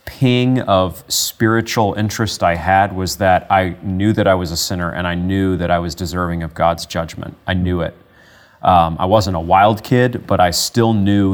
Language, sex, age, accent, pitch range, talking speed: English, male, 30-49, American, 90-110 Hz, 200 wpm